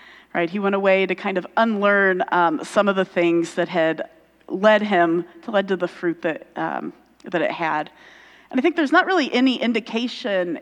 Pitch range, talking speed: 180-245 Hz, 190 wpm